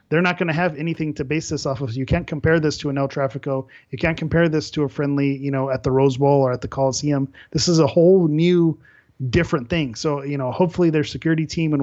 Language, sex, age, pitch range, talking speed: English, male, 30-49, 140-155 Hz, 260 wpm